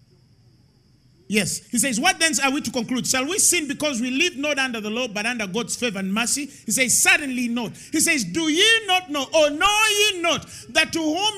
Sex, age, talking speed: male, 50-69, 220 wpm